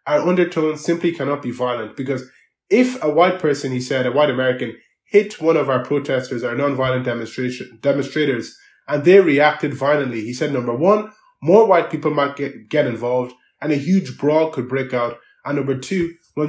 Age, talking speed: 20-39, 185 wpm